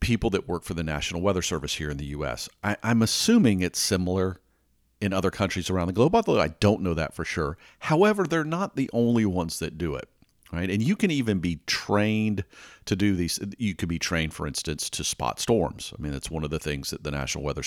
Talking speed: 230 wpm